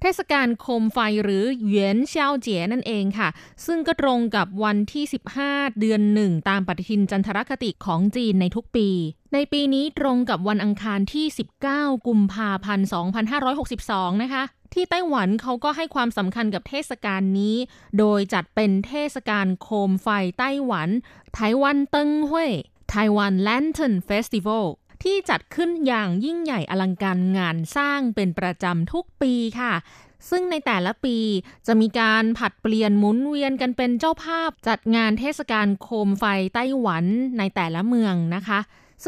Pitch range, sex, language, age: 195-265 Hz, female, Thai, 20-39